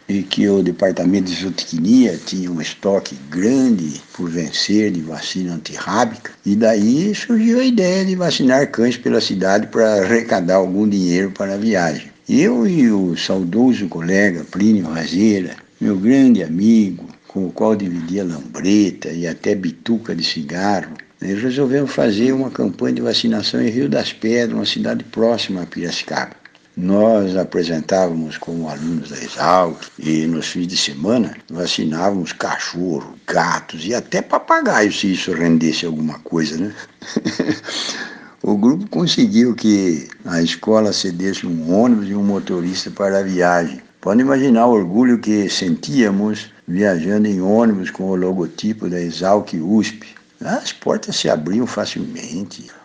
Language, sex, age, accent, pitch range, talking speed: Portuguese, male, 60-79, Brazilian, 90-115 Hz, 145 wpm